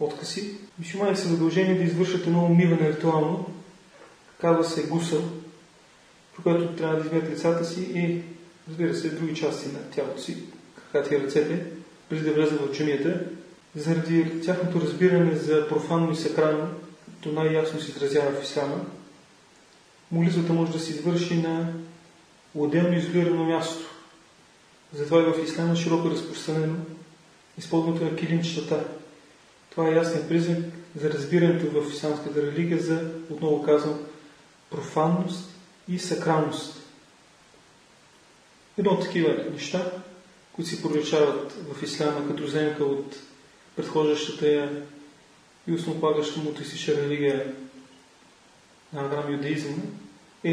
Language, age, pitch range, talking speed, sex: Bulgarian, 30-49, 150-170 Hz, 125 wpm, male